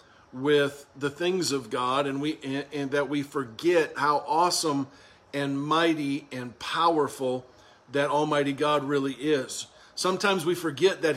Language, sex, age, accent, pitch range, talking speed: English, male, 50-69, American, 140-160 Hz, 145 wpm